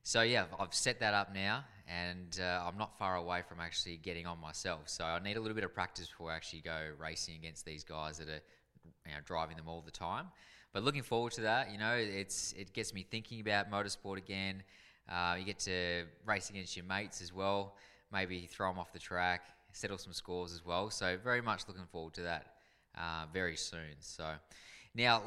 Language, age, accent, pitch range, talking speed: English, 20-39, Australian, 80-100 Hz, 215 wpm